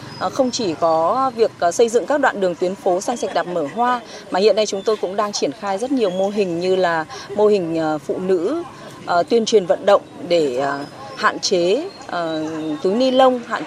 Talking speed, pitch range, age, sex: 200 wpm, 205-255 Hz, 20-39, female